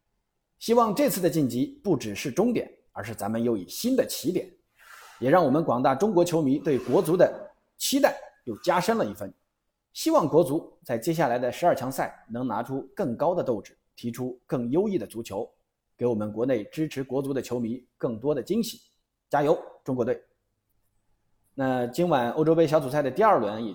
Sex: male